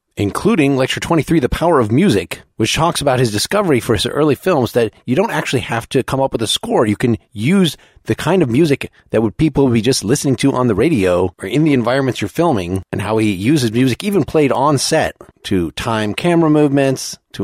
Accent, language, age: American, English, 30-49